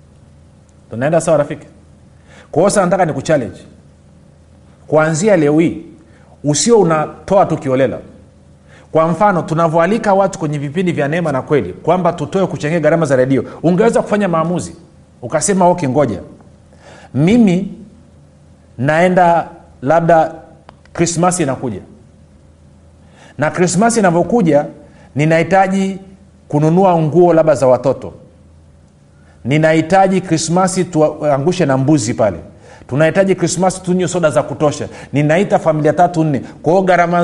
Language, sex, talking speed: Swahili, male, 110 wpm